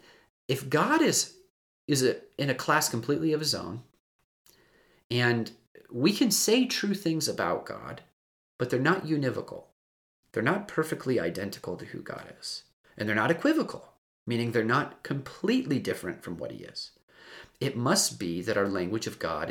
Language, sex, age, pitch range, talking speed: English, male, 30-49, 110-165 Hz, 160 wpm